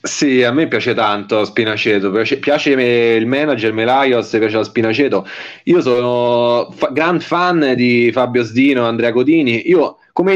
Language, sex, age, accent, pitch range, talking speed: Italian, male, 30-49, native, 115-140 Hz, 155 wpm